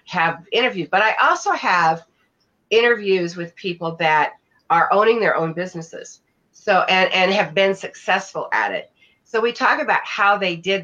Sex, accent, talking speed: female, American, 165 wpm